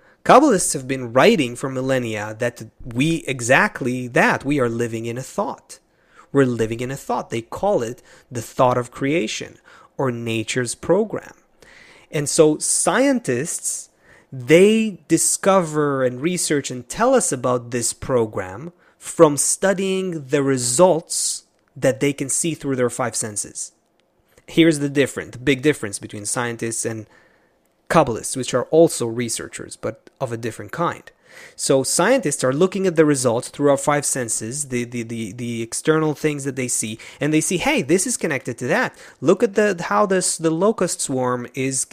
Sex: male